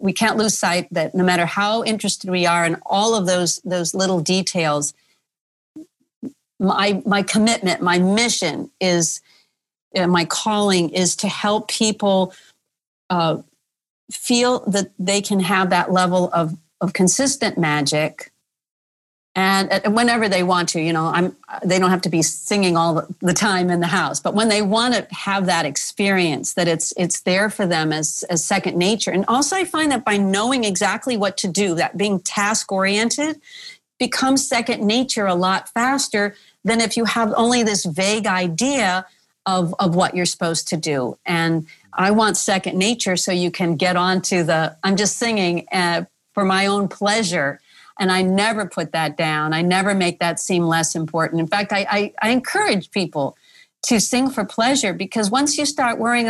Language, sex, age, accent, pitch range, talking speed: English, female, 40-59, American, 175-220 Hz, 175 wpm